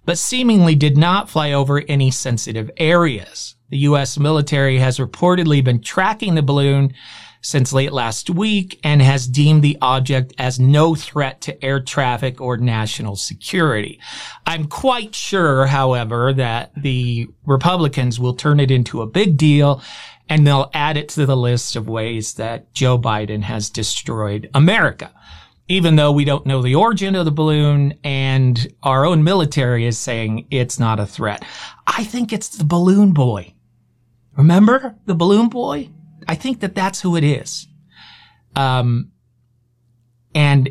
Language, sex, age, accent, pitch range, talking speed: English, male, 40-59, American, 125-165 Hz, 155 wpm